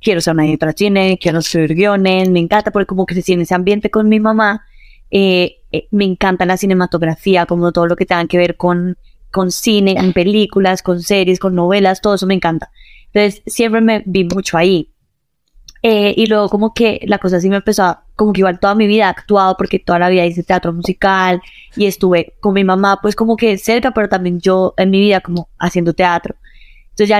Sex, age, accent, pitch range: female, 20-39, Colombian, 180-210 Hz